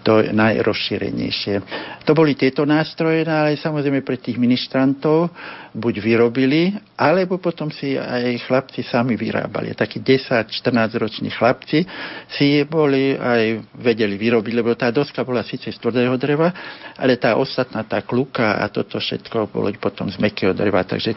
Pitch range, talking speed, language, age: 110-140 Hz, 145 wpm, Slovak, 60-79